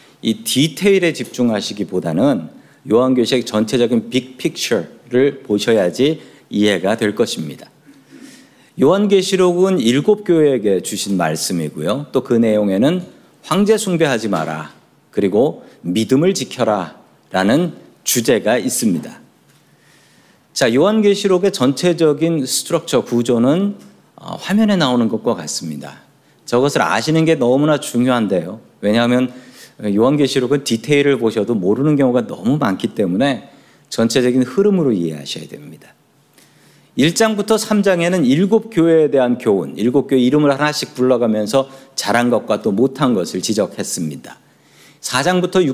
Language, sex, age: Korean, male, 40-59